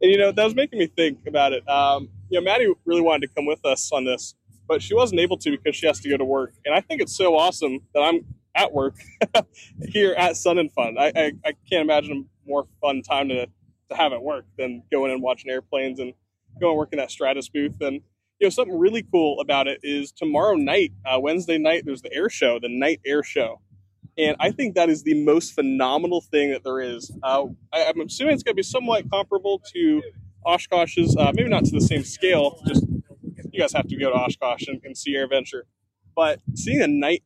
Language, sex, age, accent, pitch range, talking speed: English, male, 20-39, American, 135-175 Hz, 230 wpm